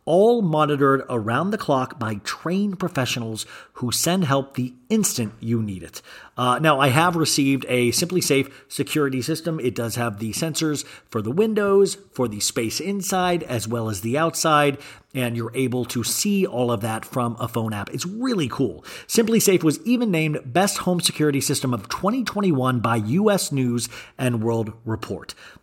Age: 40-59